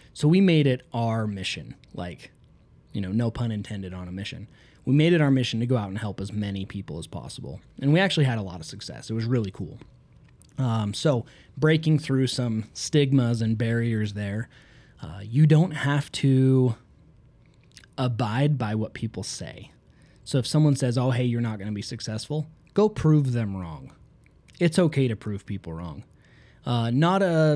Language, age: English, 20-39